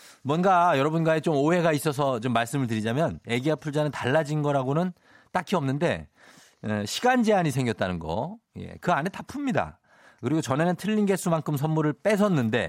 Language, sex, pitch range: Korean, male, 120-185 Hz